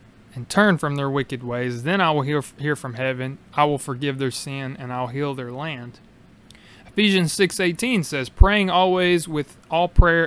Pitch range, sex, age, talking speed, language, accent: 130-165 Hz, male, 20-39, 185 wpm, English, American